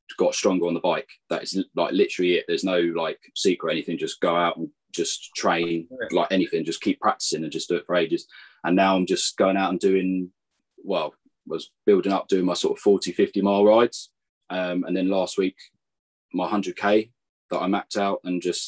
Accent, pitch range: British, 90-115 Hz